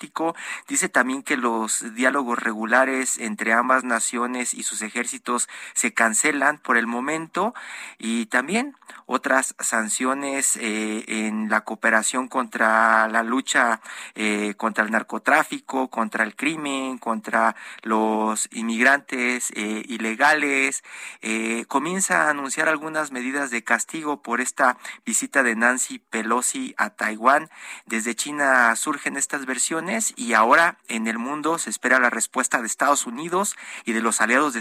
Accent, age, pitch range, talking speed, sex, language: Mexican, 40-59, 115-145 Hz, 135 wpm, male, Spanish